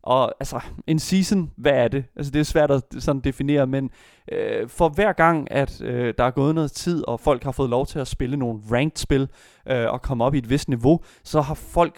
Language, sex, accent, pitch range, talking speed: Danish, male, native, 125-155 Hz, 240 wpm